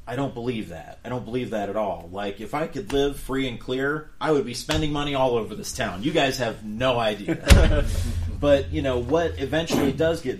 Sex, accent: male, American